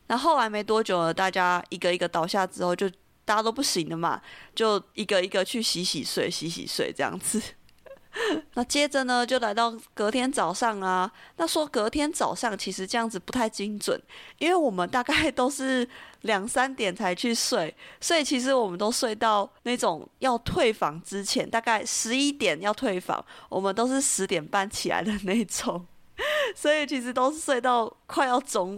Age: 30-49